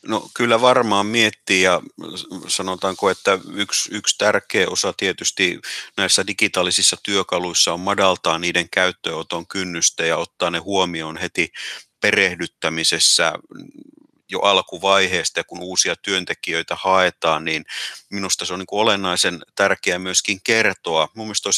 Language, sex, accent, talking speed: Finnish, male, native, 120 wpm